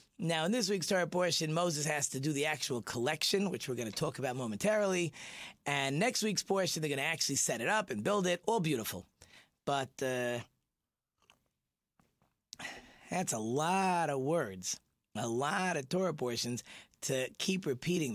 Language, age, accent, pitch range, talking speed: English, 30-49, American, 135-190 Hz, 170 wpm